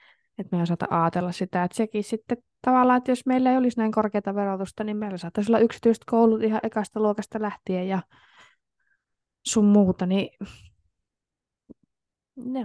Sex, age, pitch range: female, 20-39, 155-215 Hz